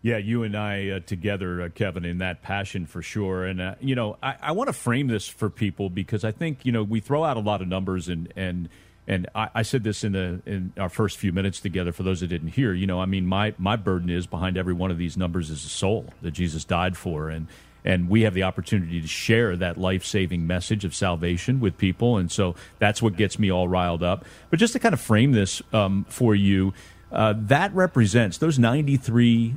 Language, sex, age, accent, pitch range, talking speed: English, male, 40-59, American, 95-115 Hz, 240 wpm